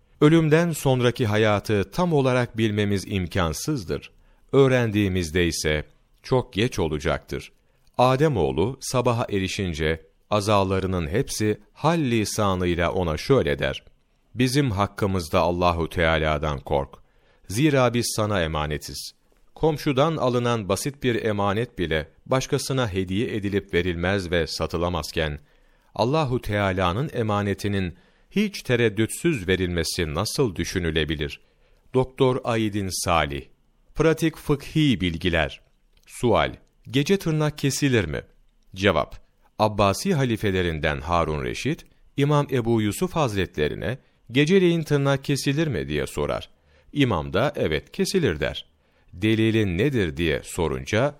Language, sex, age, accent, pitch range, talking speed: Turkish, male, 40-59, native, 85-135 Hz, 100 wpm